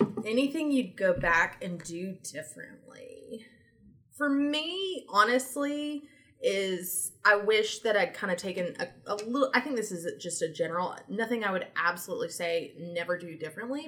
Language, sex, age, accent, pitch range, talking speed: English, female, 20-39, American, 170-225 Hz, 155 wpm